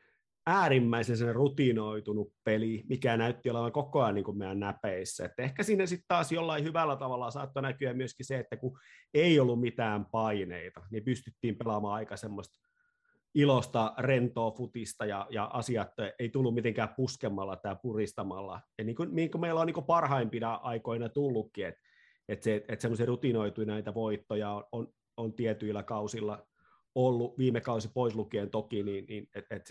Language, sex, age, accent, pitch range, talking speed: Finnish, male, 30-49, native, 105-130 Hz, 170 wpm